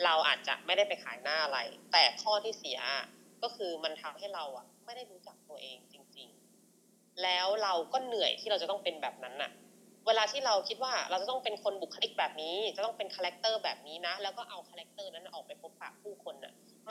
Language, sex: Thai, female